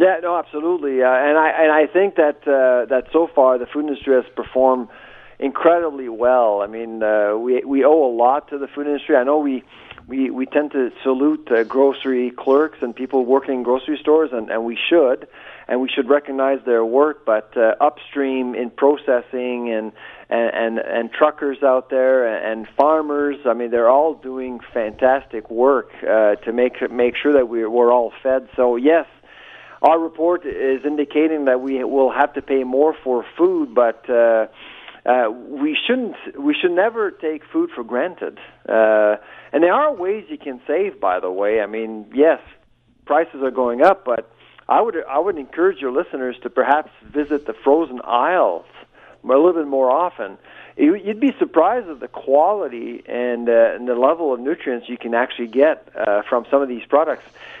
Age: 50-69